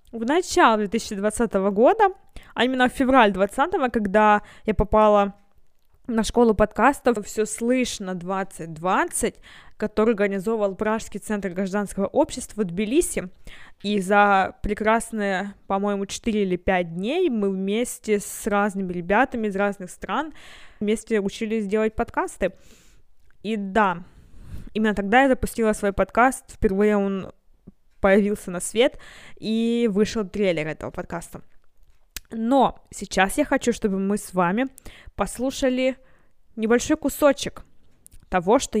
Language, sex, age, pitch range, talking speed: Russian, female, 20-39, 195-240 Hz, 120 wpm